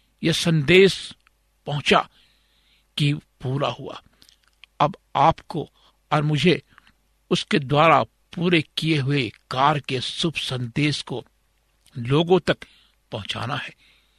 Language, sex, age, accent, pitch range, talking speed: Hindi, male, 60-79, native, 135-170 Hz, 100 wpm